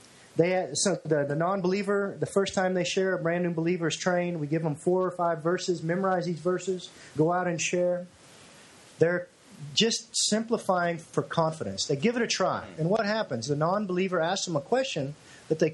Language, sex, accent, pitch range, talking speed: English, male, American, 155-190 Hz, 200 wpm